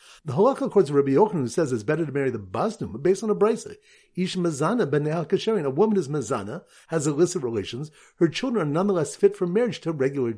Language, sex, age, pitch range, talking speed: English, male, 50-69, 150-210 Hz, 210 wpm